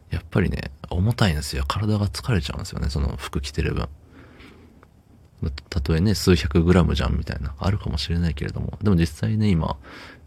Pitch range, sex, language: 80-90 Hz, male, Japanese